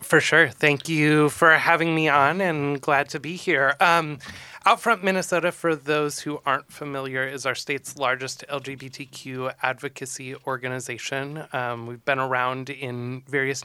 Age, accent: 20-39, American